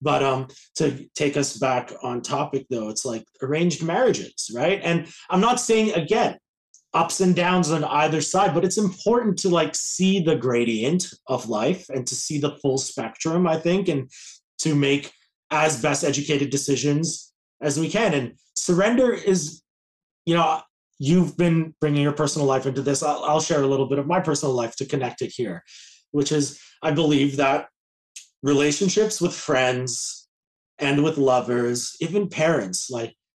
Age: 30-49